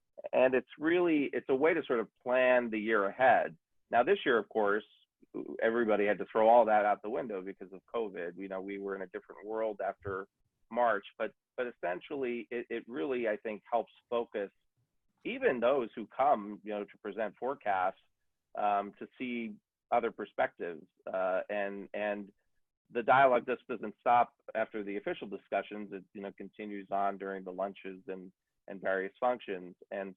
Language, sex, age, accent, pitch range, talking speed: English, male, 40-59, American, 100-110 Hz, 175 wpm